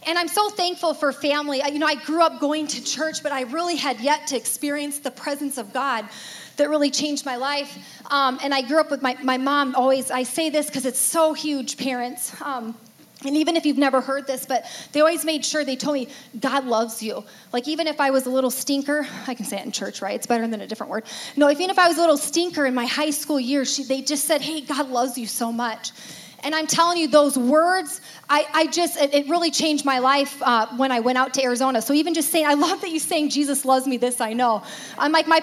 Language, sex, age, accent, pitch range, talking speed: English, female, 30-49, American, 265-325 Hz, 255 wpm